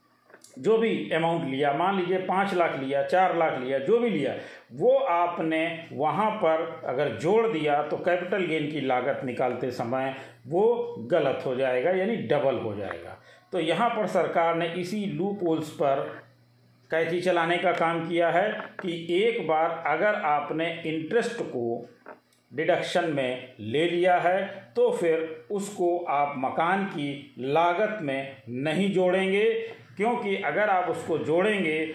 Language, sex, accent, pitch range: Hindi, male, native, 145-190 Hz